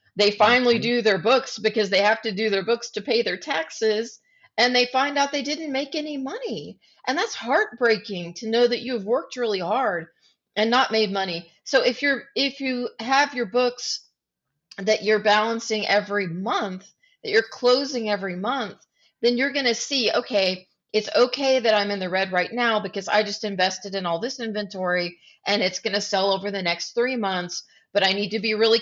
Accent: American